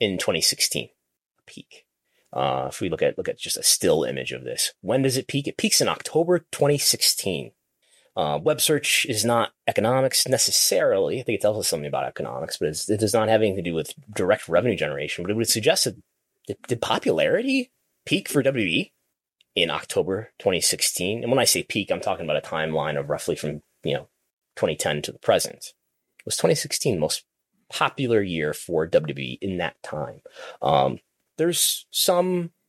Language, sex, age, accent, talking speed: English, male, 30-49, American, 180 wpm